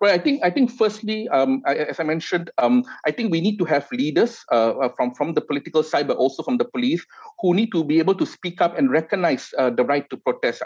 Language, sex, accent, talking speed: English, male, Malaysian, 255 wpm